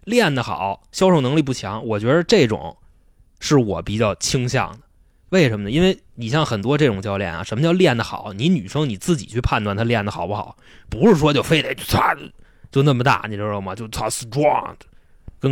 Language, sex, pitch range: Chinese, male, 105-160 Hz